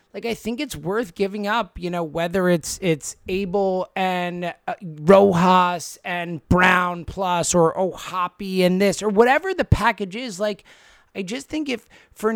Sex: male